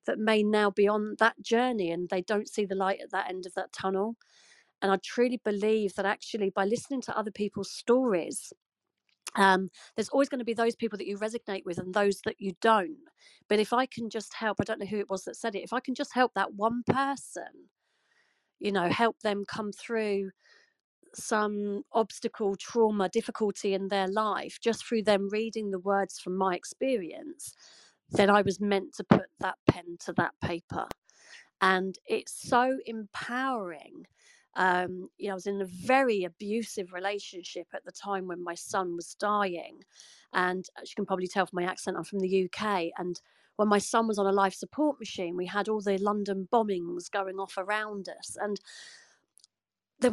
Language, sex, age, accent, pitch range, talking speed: English, female, 40-59, British, 190-230 Hz, 190 wpm